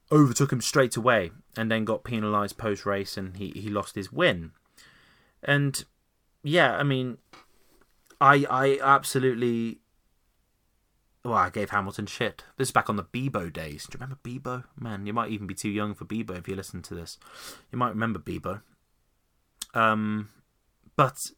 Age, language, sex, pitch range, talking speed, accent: 20-39, English, male, 105-135 Hz, 165 wpm, British